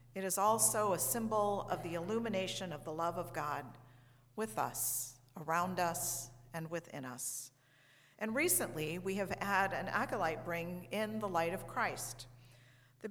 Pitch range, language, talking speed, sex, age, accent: 135-195 Hz, English, 155 wpm, female, 50-69, American